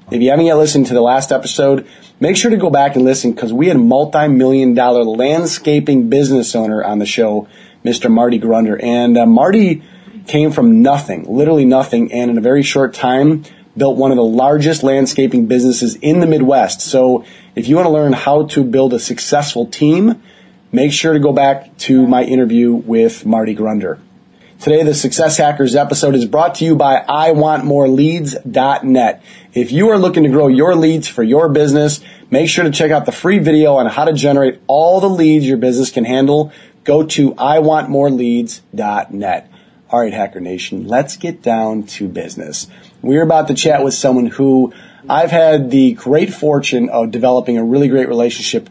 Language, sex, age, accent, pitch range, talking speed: English, male, 30-49, American, 120-155 Hz, 185 wpm